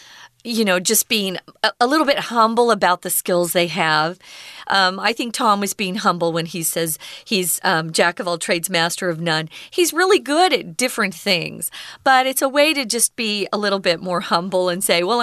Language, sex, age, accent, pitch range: Chinese, female, 50-69, American, 185-270 Hz